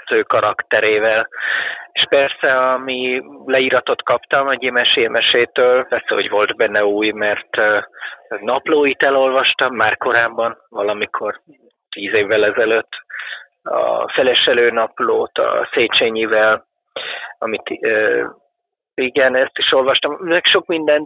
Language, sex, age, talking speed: Hungarian, male, 30-49, 110 wpm